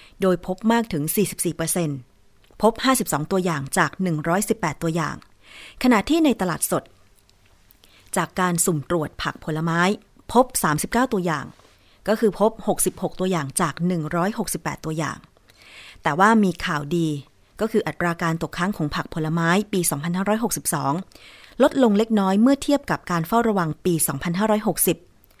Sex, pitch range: female, 160-200 Hz